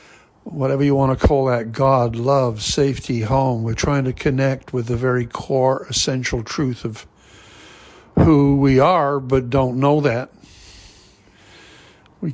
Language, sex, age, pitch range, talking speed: English, male, 60-79, 110-135 Hz, 140 wpm